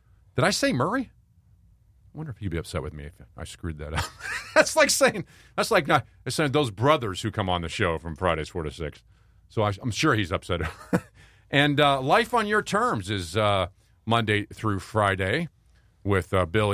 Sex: male